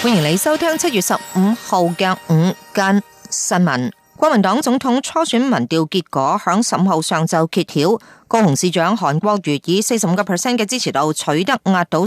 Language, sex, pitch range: Chinese, female, 170-230 Hz